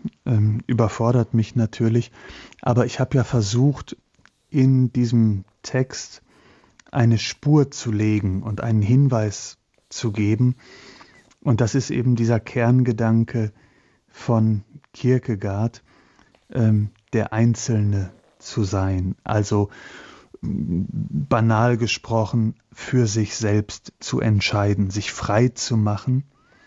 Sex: male